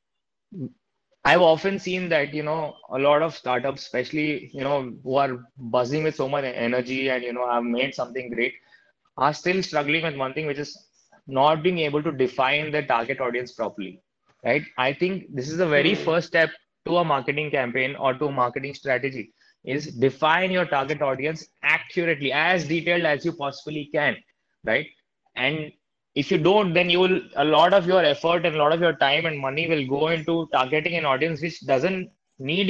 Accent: native